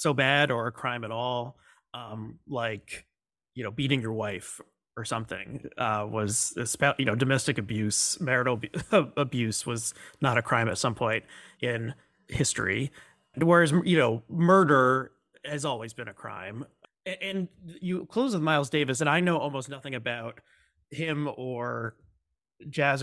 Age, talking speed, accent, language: 30-49, 150 wpm, American, English